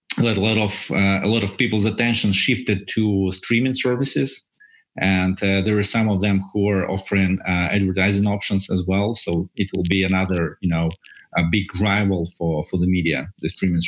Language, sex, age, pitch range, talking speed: English, male, 30-49, 90-105 Hz, 190 wpm